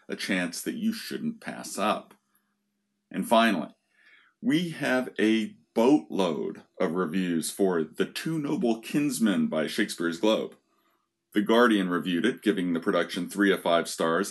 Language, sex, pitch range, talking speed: English, male, 100-145 Hz, 145 wpm